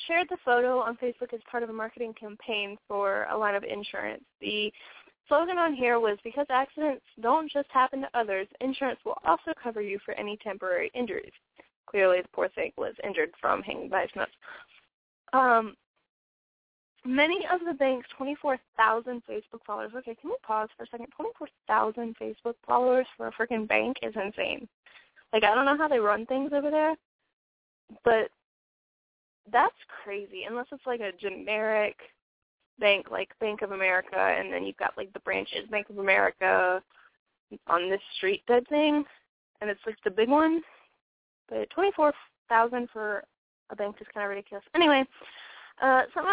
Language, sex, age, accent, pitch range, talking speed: English, female, 10-29, American, 210-285 Hz, 165 wpm